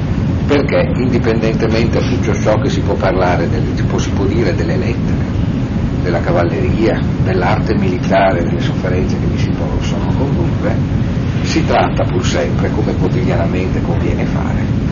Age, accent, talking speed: 50-69, native, 140 wpm